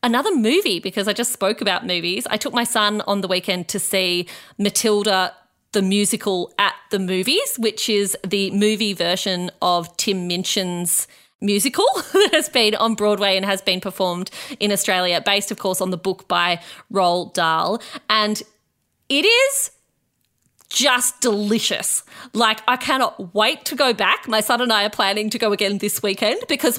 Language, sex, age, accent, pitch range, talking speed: English, female, 30-49, Australian, 195-240 Hz, 170 wpm